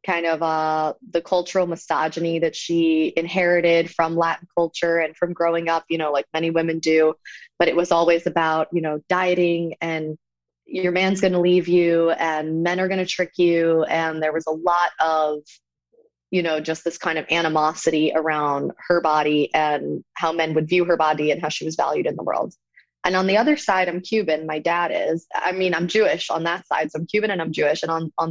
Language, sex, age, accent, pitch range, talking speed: English, female, 20-39, American, 155-180 Hz, 215 wpm